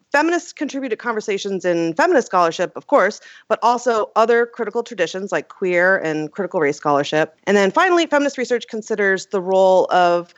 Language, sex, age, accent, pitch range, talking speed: English, female, 30-49, American, 175-240 Hz, 170 wpm